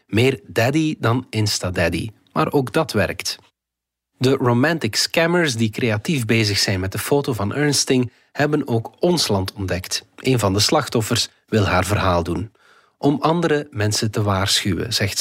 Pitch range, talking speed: 100-135 Hz, 155 wpm